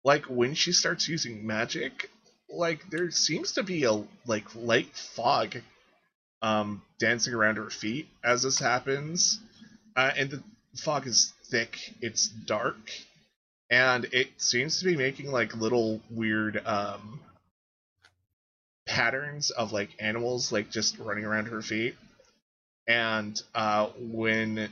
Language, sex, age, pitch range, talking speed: English, male, 20-39, 110-150 Hz, 130 wpm